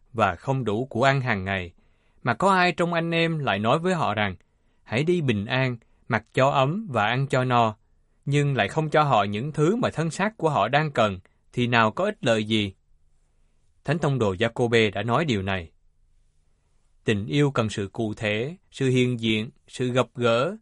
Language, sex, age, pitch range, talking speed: Vietnamese, male, 20-39, 105-155 Hz, 200 wpm